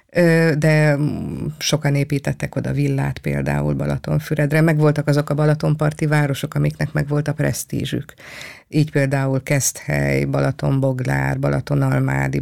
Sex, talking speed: female, 105 wpm